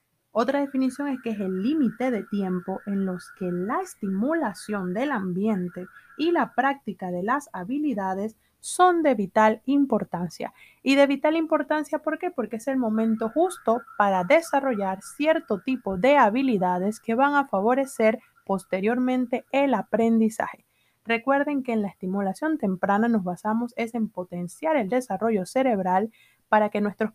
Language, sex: Spanish, female